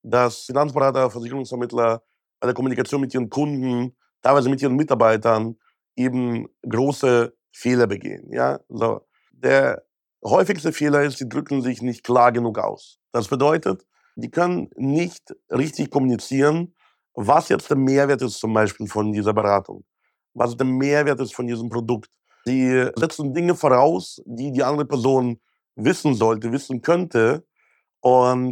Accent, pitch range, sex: German, 120-145 Hz, male